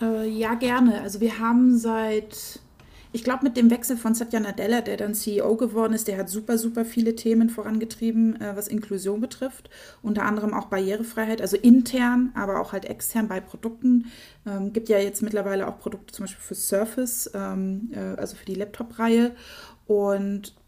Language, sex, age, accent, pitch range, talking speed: German, female, 30-49, German, 200-230 Hz, 175 wpm